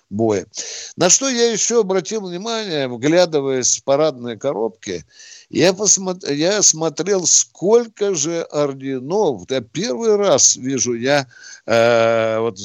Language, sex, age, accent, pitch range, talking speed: Russian, male, 60-79, native, 130-180 Hz, 120 wpm